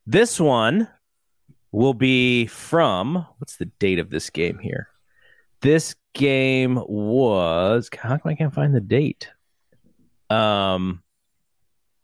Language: English